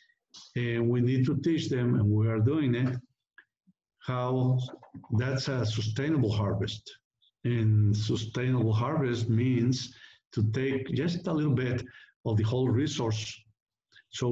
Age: 50-69